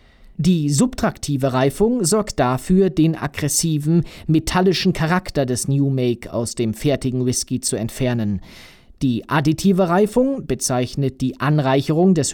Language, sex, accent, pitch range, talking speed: German, male, German, 125-185 Hz, 120 wpm